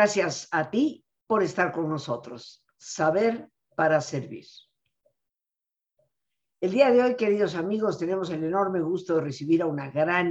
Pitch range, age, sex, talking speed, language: 145-190 Hz, 50-69, female, 145 wpm, Spanish